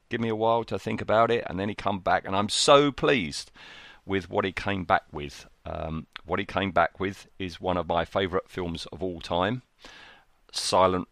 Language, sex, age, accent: English, male, 40-59, British